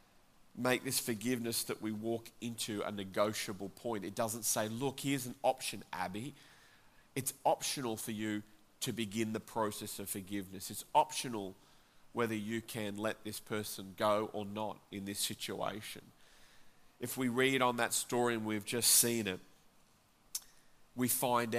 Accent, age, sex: Australian, 40-59, male